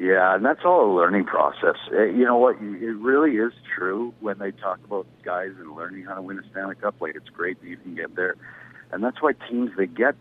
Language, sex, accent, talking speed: English, male, American, 245 wpm